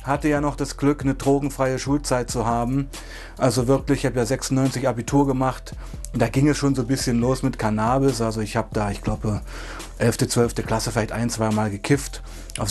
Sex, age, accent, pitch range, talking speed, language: male, 30-49, German, 120-140 Hz, 205 wpm, German